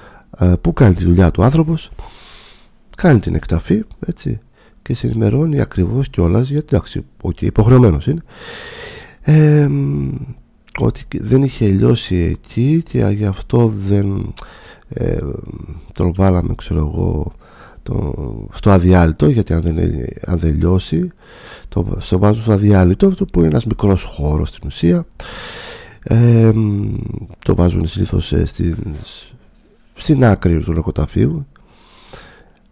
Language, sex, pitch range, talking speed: Greek, male, 85-130 Hz, 100 wpm